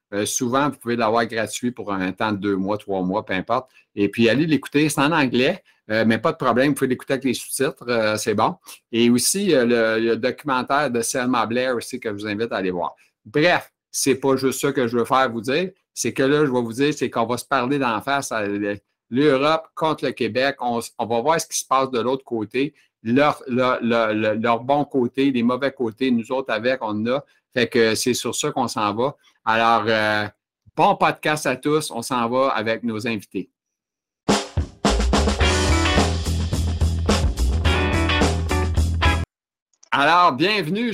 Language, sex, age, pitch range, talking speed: French, male, 60-79, 110-145 Hz, 195 wpm